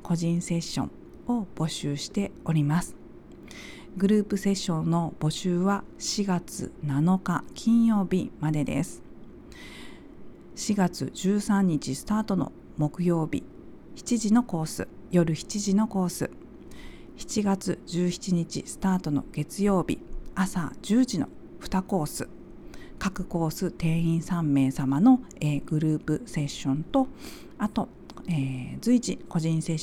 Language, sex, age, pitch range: Japanese, female, 40-59, 160-215 Hz